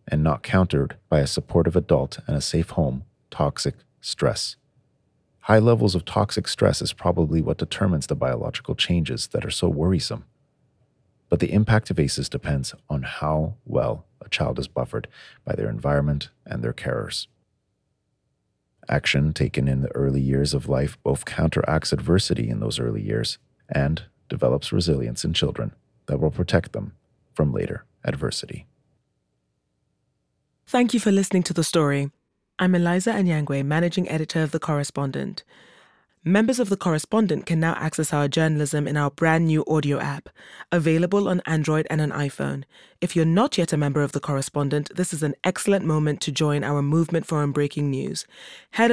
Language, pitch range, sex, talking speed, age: English, 105-170 Hz, male, 165 wpm, 40-59